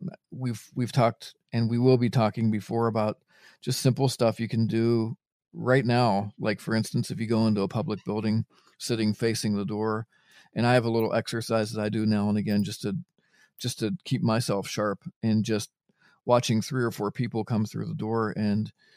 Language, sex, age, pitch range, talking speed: English, male, 40-59, 110-135 Hz, 200 wpm